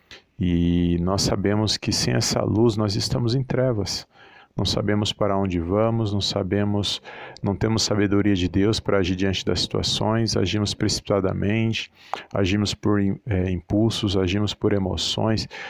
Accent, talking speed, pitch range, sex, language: Brazilian, 140 wpm, 100-115 Hz, male, Portuguese